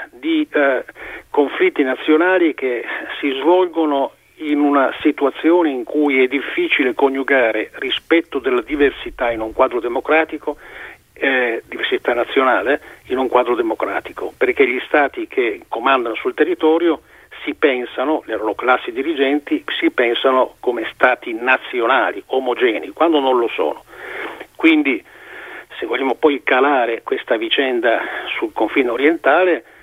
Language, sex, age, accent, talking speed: Italian, male, 50-69, native, 125 wpm